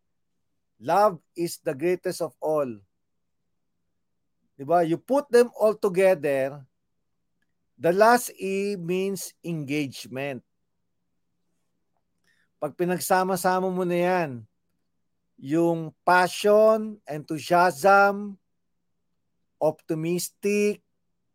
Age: 50-69